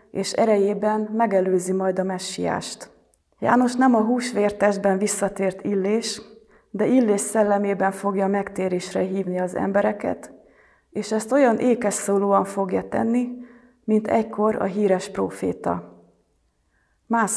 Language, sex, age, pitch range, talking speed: Hungarian, female, 30-49, 190-225 Hz, 110 wpm